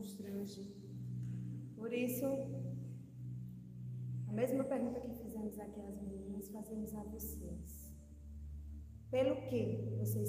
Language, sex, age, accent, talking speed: Portuguese, female, 20-39, Brazilian, 95 wpm